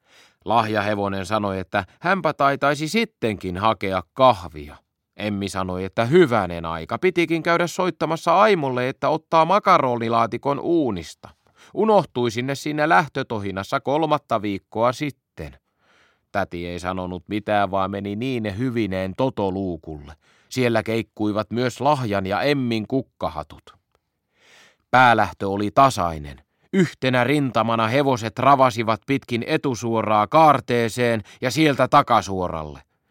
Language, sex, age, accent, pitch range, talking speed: Finnish, male, 30-49, native, 100-145 Hz, 105 wpm